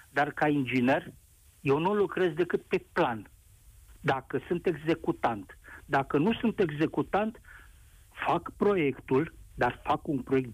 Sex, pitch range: male, 120-200 Hz